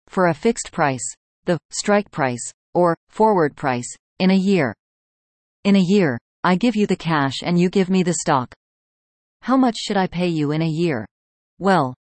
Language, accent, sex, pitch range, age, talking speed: English, American, female, 145-190 Hz, 40-59, 185 wpm